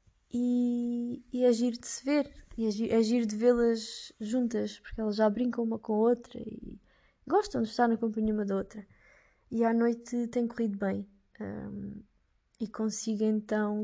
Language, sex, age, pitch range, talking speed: Portuguese, female, 20-39, 200-235 Hz, 170 wpm